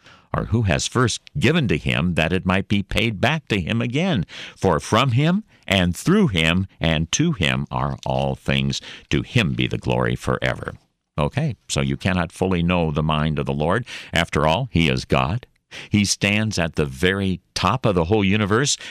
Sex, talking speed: male, 190 wpm